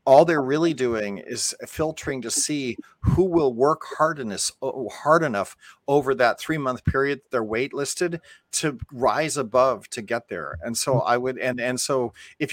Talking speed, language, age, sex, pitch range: 160 wpm, English, 40-59, male, 115-145 Hz